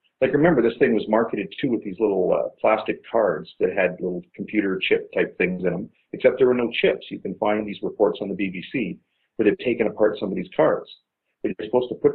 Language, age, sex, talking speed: English, 50-69, male, 235 wpm